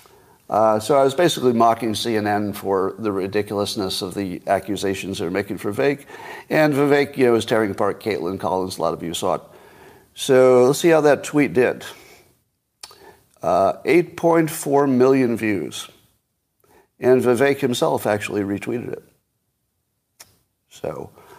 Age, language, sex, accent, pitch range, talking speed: 50-69, English, male, American, 105-155 Hz, 145 wpm